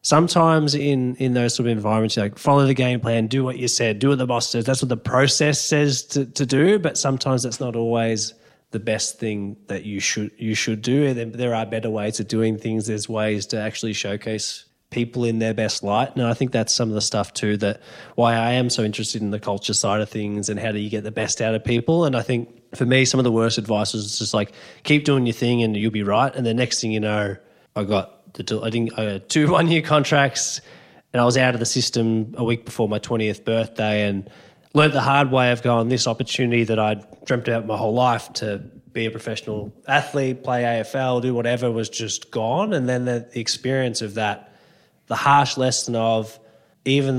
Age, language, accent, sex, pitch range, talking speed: 20-39, English, Australian, male, 110-130 Hz, 235 wpm